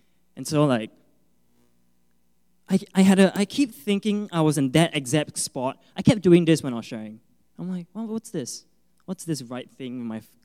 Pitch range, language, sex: 110-175 Hz, English, male